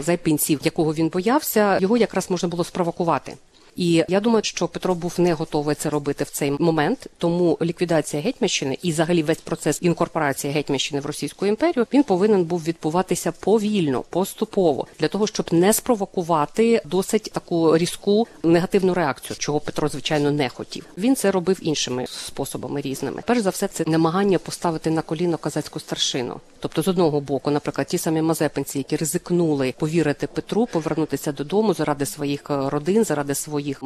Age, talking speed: 50-69, 160 wpm